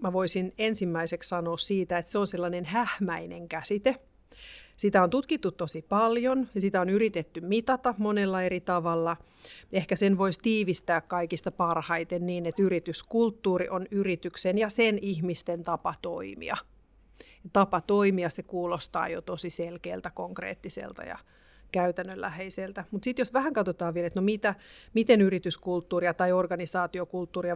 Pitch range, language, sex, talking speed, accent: 175-205 Hz, Finnish, female, 135 wpm, native